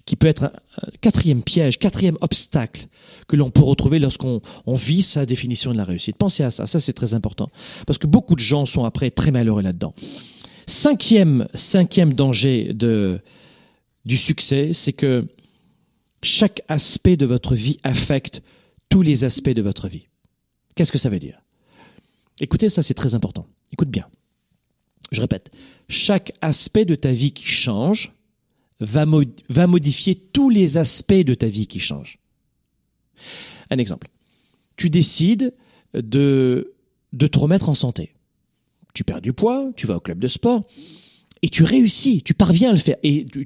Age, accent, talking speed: 40-59, French, 165 wpm